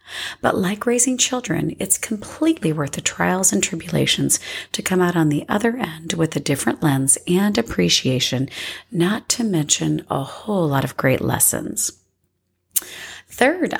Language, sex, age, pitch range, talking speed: English, female, 40-59, 155-245 Hz, 150 wpm